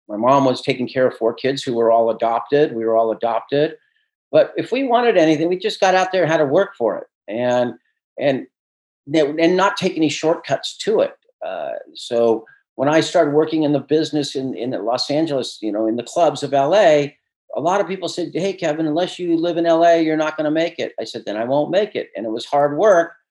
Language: English